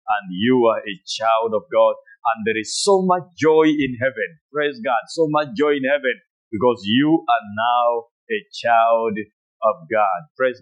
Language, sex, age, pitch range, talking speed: English, male, 50-69, 120-170 Hz, 175 wpm